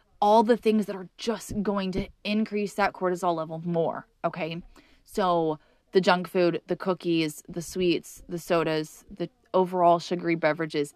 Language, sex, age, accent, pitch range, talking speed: English, female, 20-39, American, 170-205 Hz, 155 wpm